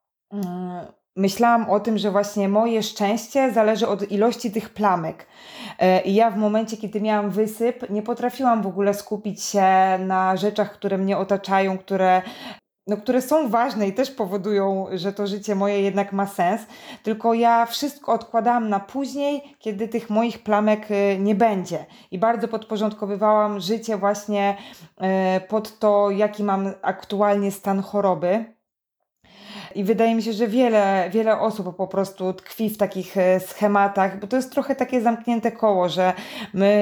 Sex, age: female, 20-39